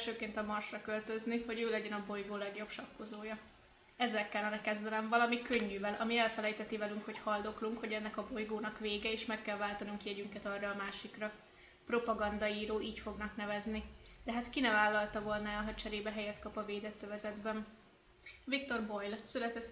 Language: Hungarian